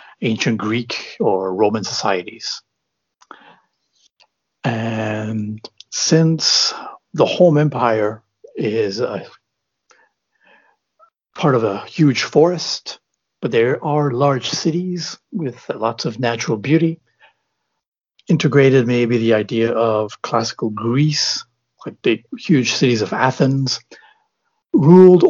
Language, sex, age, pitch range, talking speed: English, male, 60-79, 110-150 Hz, 95 wpm